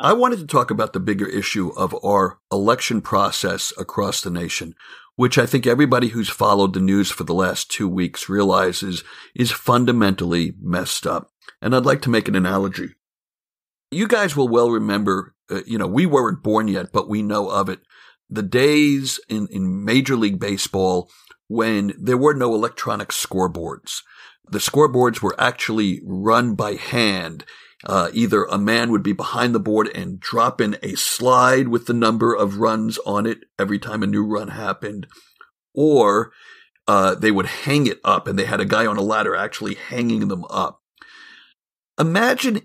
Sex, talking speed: male, 175 wpm